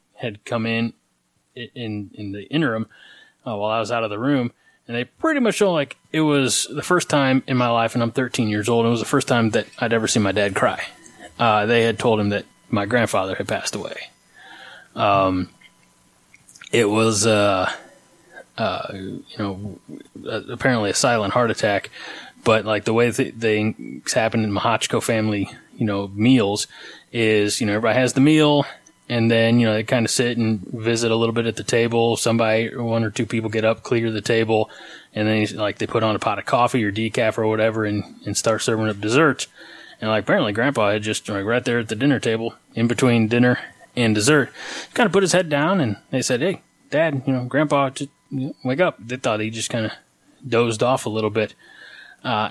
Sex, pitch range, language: male, 105-125 Hz, English